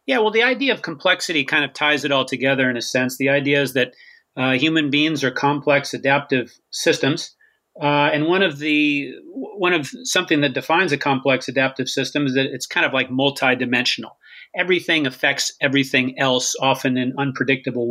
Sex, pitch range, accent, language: male, 130-150 Hz, American, English